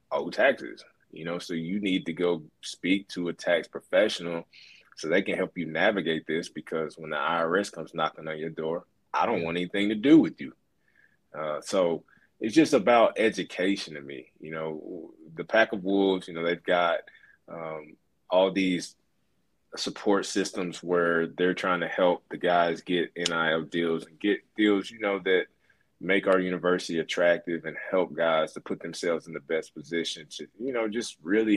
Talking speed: 180 wpm